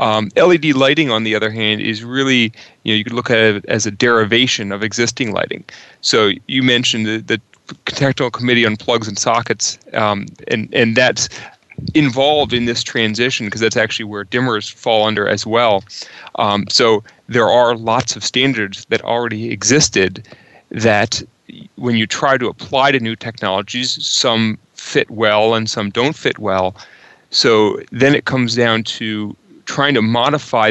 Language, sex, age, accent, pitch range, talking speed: English, male, 30-49, American, 110-125 Hz, 170 wpm